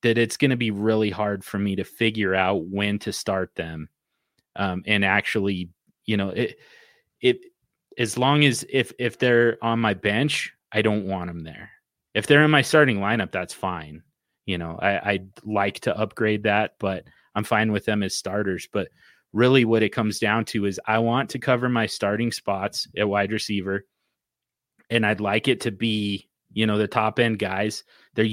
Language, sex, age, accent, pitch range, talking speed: English, male, 30-49, American, 100-115 Hz, 195 wpm